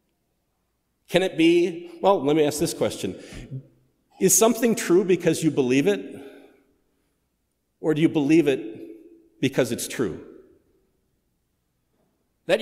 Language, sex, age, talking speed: English, male, 50-69, 120 wpm